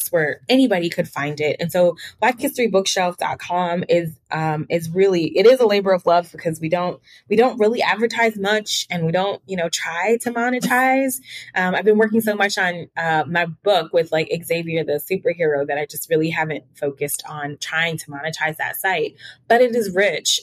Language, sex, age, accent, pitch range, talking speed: English, female, 20-39, American, 160-210 Hz, 195 wpm